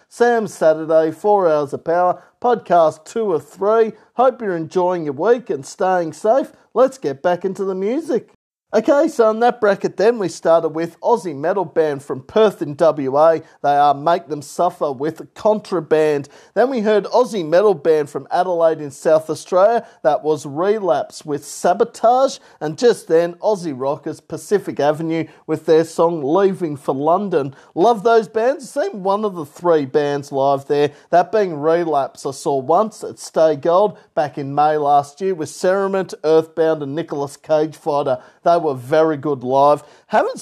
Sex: male